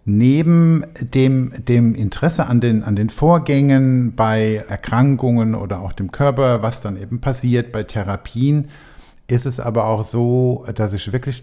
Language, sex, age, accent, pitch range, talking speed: German, male, 50-69, German, 110-130 Hz, 145 wpm